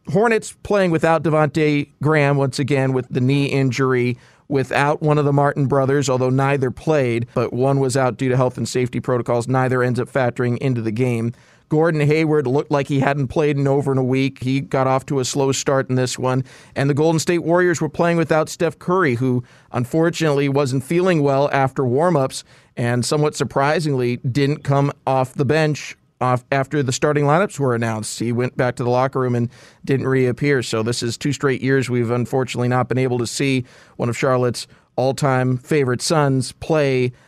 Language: English